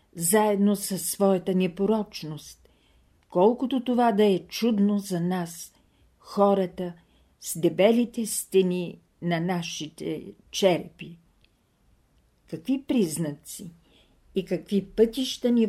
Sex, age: female, 50-69